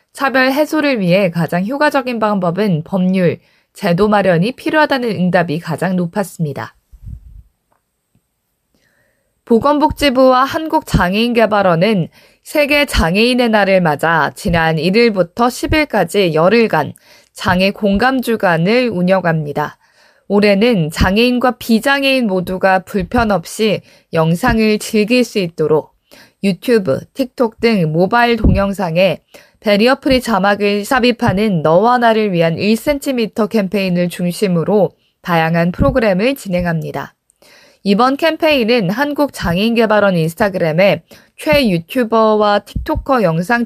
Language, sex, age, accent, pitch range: Korean, female, 20-39, native, 180-245 Hz